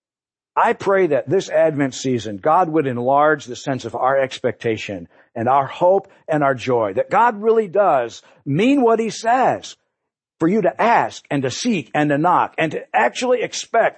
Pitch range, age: 135-210 Hz, 50-69